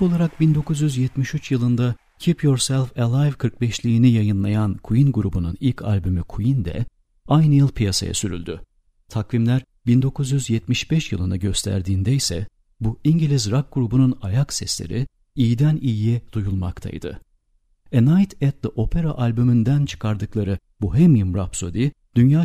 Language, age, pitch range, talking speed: Turkish, 50-69, 100-135 Hz, 110 wpm